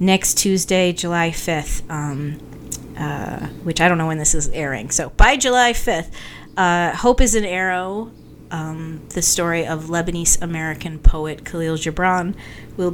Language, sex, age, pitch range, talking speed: English, female, 30-49, 150-180 Hz, 150 wpm